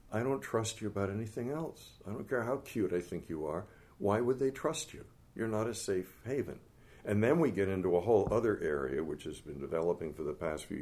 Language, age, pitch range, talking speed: English, 60-79, 95-115 Hz, 240 wpm